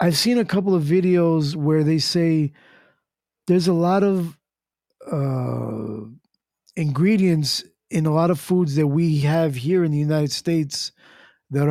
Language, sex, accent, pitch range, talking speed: English, male, American, 145-170 Hz, 150 wpm